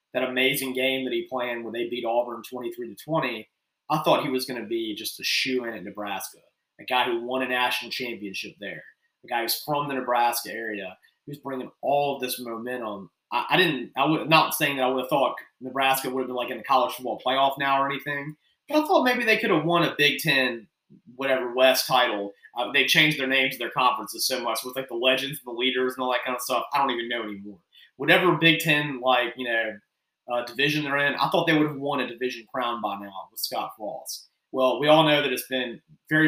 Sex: male